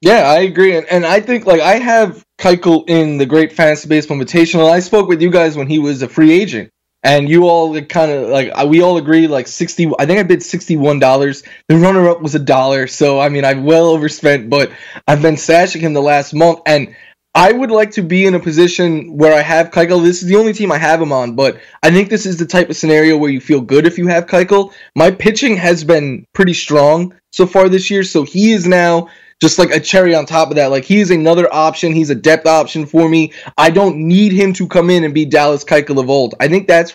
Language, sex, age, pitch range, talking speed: English, male, 10-29, 145-180 Hz, 245 wpm